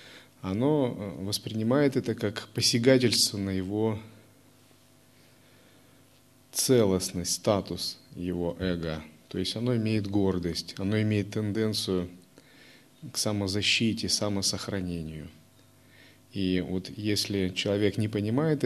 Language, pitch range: Russian, 95-125 Hz